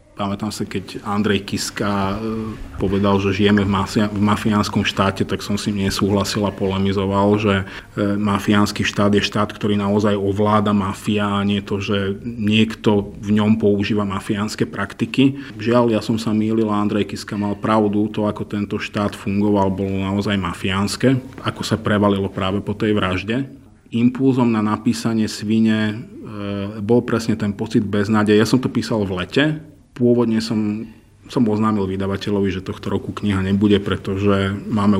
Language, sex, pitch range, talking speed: Slovak, male, 100-110 Hz, 160 wpm